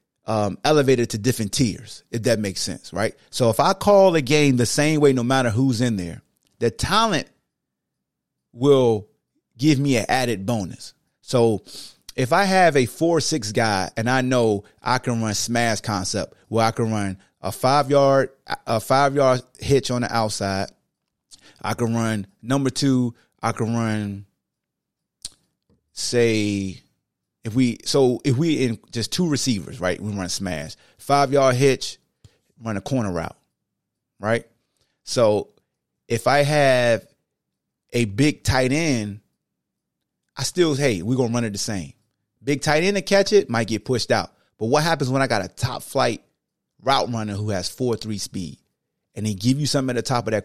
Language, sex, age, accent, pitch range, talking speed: English, male, 30-49, American, 110-140 Hz, 170 wpm